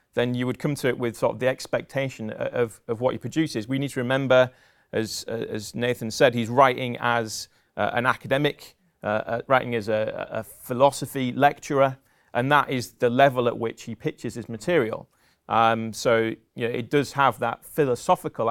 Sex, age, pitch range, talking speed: male, 30-49, 115-140 Hz, 195 wpm